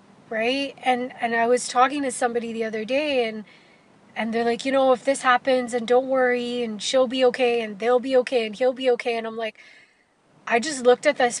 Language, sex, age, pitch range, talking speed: English, female, 20-39, 220-255 Hz, 225 wpm